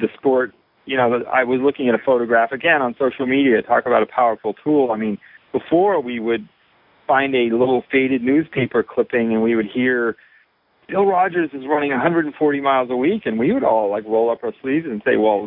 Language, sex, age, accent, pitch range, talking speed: English, male, 40-59, American, 115-145 Hz, 210 wpm